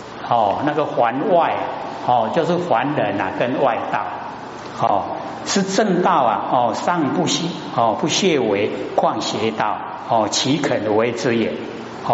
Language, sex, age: Chinese, male, 60-79